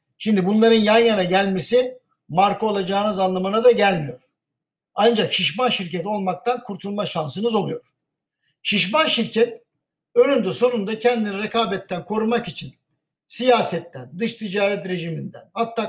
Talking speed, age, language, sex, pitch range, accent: 115 wpm, 60-79, Turkish, male, 175-235 Hz, native